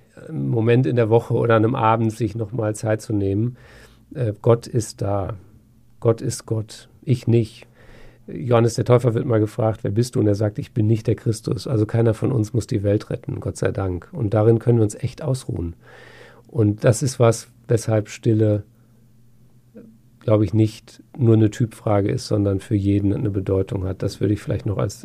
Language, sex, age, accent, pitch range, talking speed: German, male, 50-69, German, 105-120 Hz, 200 wpm